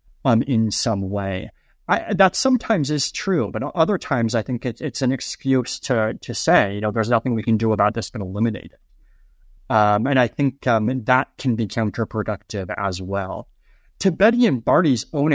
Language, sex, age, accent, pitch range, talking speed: English, male, 30-49, American, 110-150 Hz, 190 wpm